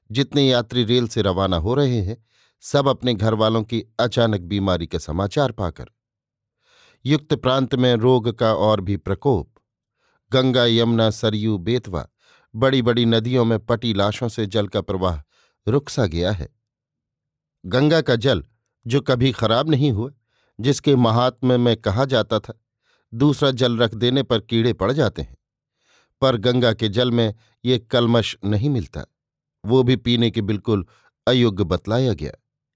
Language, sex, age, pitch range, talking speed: Hindi, male, 50-69, 110-130 Hz, 155 wpm